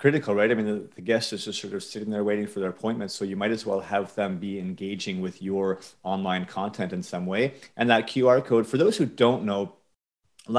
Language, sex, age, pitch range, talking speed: English, male, 30-49, 100-115 Hz, 245 wpm